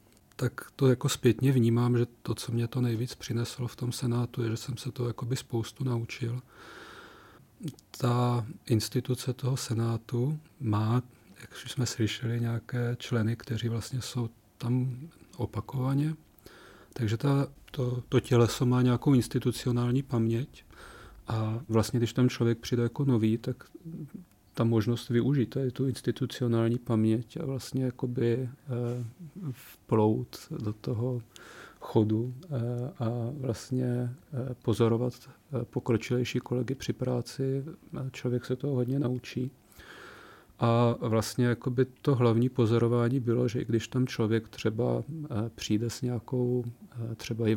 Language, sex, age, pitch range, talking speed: Czech, male, 40-59, 115-130 Hz, 125 wpm